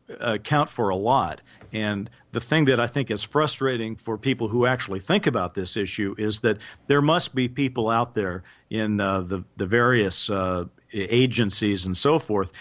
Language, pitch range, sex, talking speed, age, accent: English, 95-115 Hz, male, 180 wpm, 50-69, American